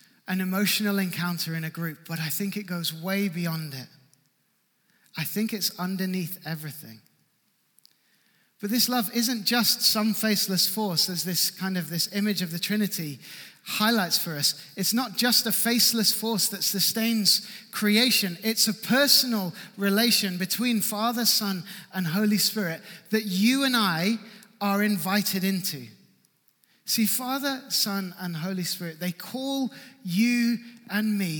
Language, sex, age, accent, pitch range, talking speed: English, male, 30-49, British, 180-225 Hz, 145 wpm